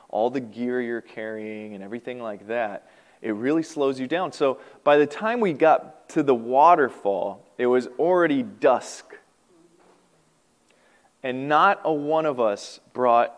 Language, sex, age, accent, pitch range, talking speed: English, male, 20-39, American, 135-200 Hz, 150 wpm